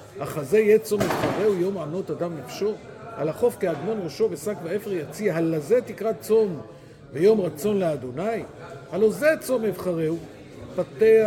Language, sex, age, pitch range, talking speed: Hebrew, male, 50-69, 155-205 Hz, 140 wpm